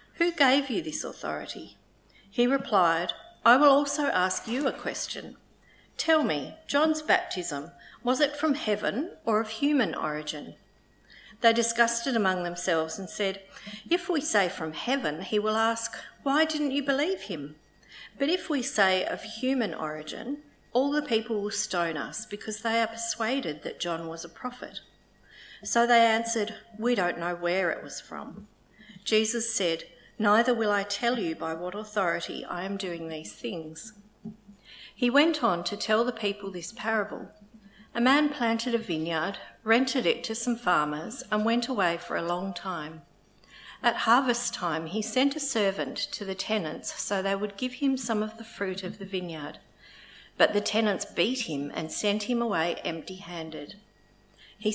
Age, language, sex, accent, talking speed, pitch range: 50-69, English, female, Australian, 170 wpm, 185-245 Hz